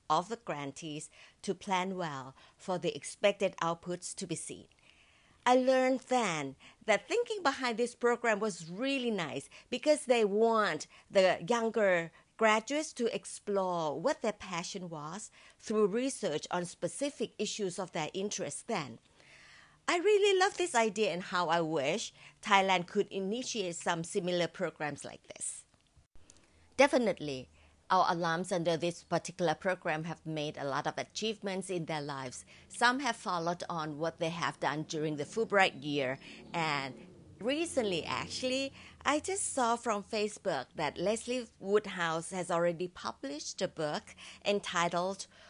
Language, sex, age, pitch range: Thai, female, 50-69, 165-220 Hz